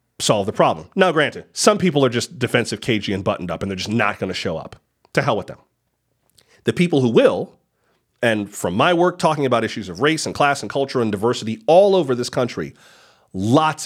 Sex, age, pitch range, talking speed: male, 40-59, 115-160 Hz, 215 wpm